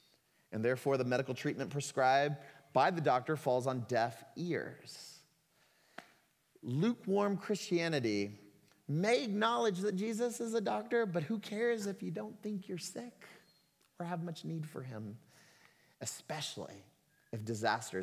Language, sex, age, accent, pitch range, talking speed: English, male, 30-49, American, 135-175 Hz, 135 wpm